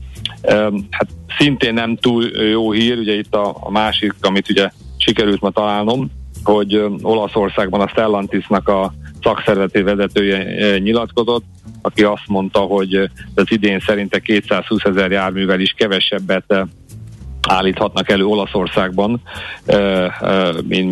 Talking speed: 110 wpm